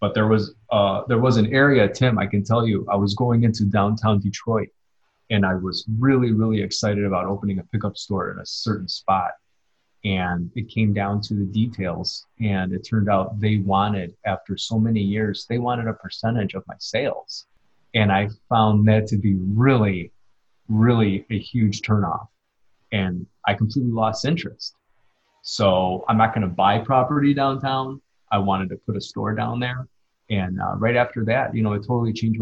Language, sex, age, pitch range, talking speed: English, male, 30-49, 100-115 Hz, 185 wpm